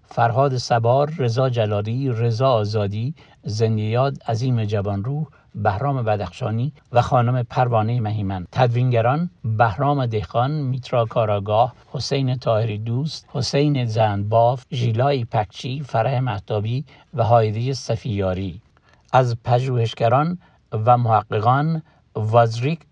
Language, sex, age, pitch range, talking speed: English, male, 60-79, 110-135 Hz, 100 wpm